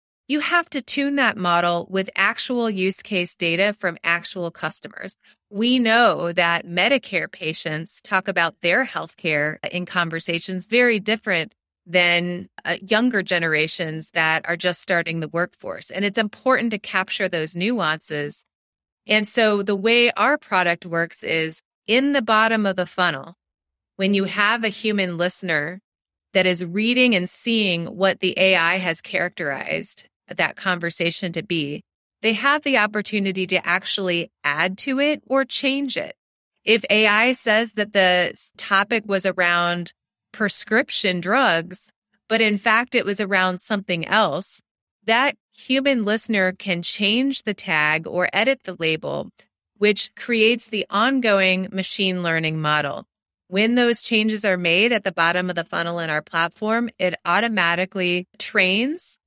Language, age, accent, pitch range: English, 30-49, American, 170-220 Hz